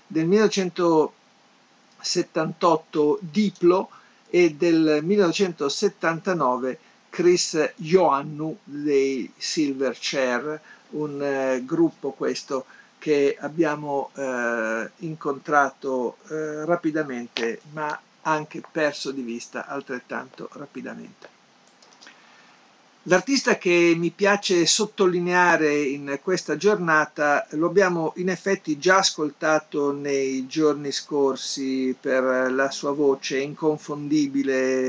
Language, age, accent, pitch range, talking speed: Italian, 50-69, native, 135-170 Hz, 85 wpm